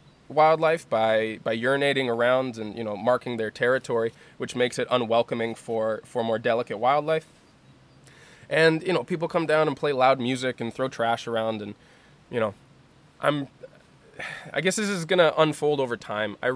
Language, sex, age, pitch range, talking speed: English, male, 20-39, 115-150 Hz, 170 wpm